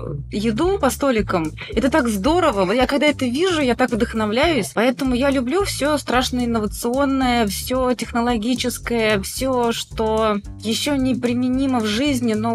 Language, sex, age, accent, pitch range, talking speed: Russian, female, 20-39, native, 200-260 Hz, 135 wpm